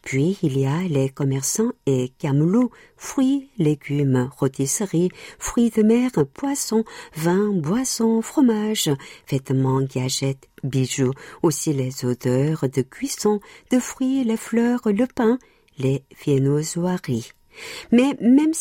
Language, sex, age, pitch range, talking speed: French, female, 50-69, 135-230 Hz, 115 wpm